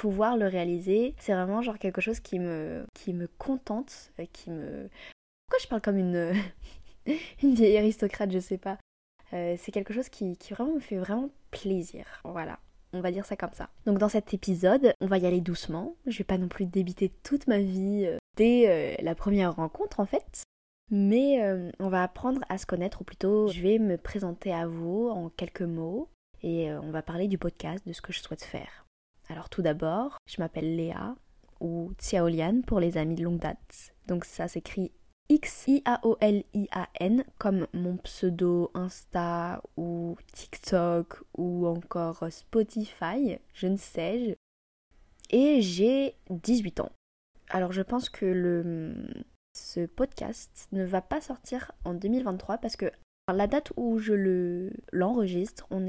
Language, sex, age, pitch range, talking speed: French, female, 20-39, 175-220 Hz, 170 wpm